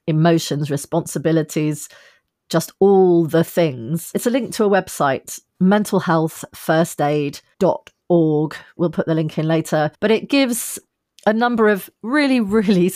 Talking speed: 125 wpm